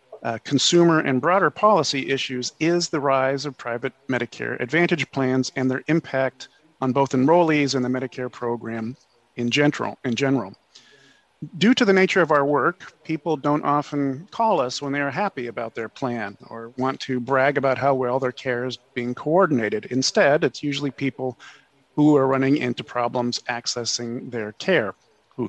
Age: 40-59